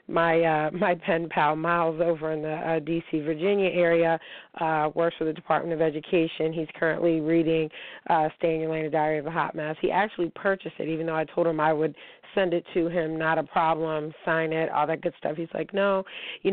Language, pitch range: English, 155-175 Hz